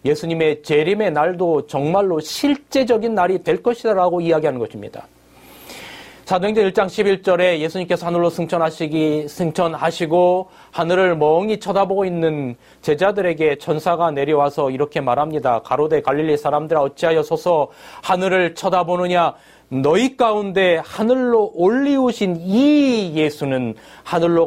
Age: 30-49